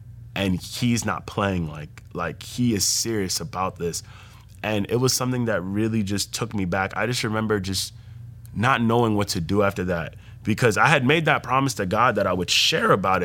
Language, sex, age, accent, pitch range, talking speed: English, male, 20-39, American, 105-120 Hz, 205 wpm